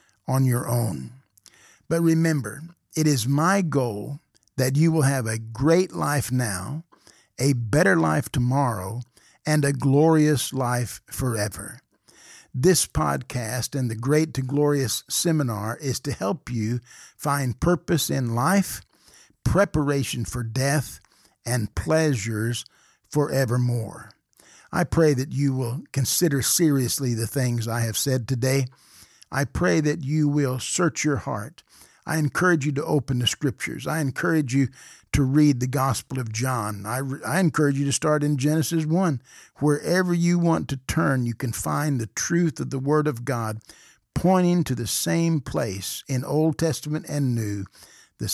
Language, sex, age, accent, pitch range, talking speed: English, male, 50-69, American, 120-150 Hz, 150 wpm